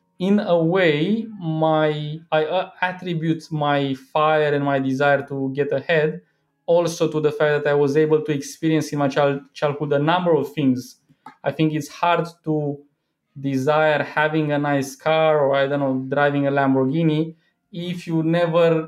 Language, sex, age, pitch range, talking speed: English, male, 20-39, 135-165 Hz, 165 wpm